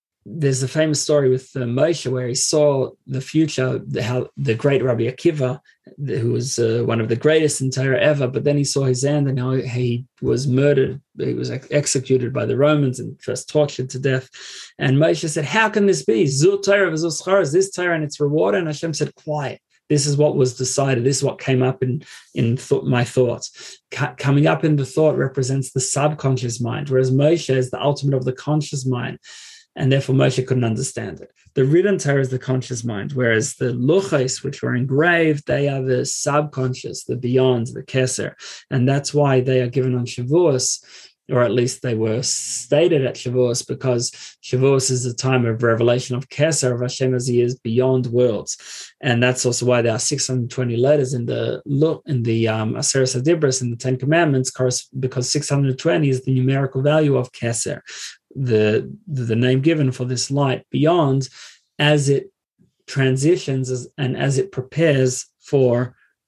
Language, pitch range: English, 125-145 Hz